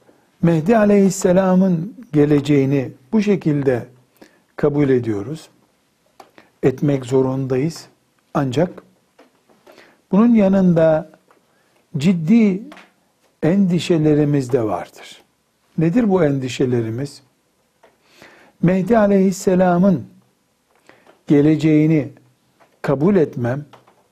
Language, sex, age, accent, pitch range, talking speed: Turkish, male, 60-79, native, 145-195 Hz, 60 wpm